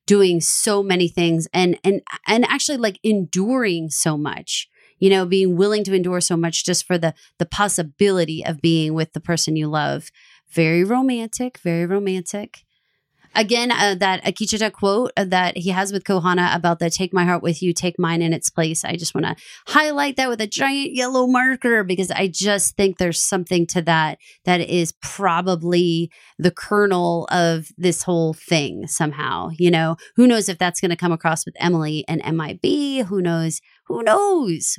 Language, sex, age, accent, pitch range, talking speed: English, female, 30-49, American, 170-210 Hz, 180 wpm